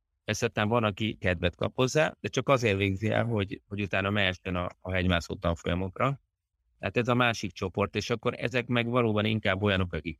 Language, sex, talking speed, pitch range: Hungarian, male, 190 wpm, 90-110 Hz